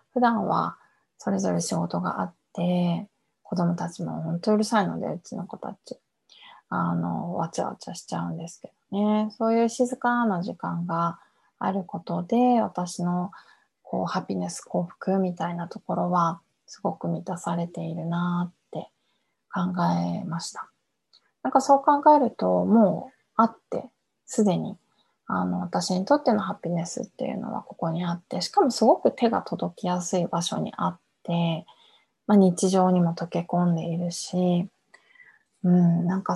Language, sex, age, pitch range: Japanese, female, 20-39, 170-225 Hz